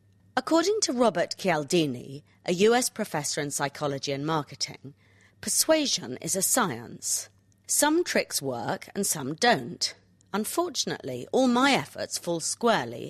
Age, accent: 40-59, British